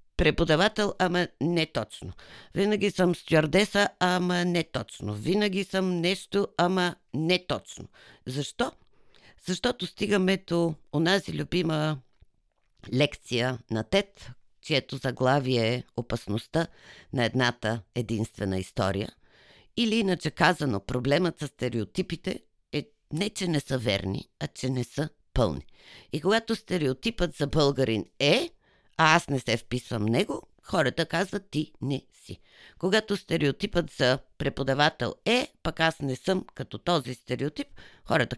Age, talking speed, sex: 50-69, 125 wpm, female